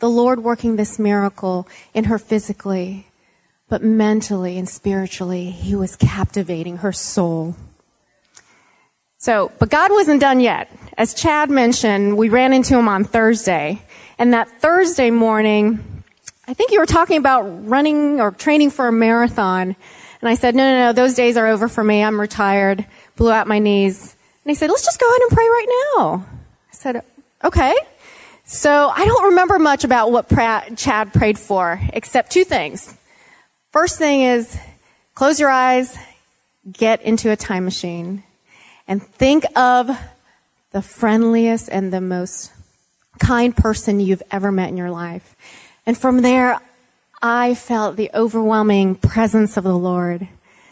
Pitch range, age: 195-255 Hz, 30-49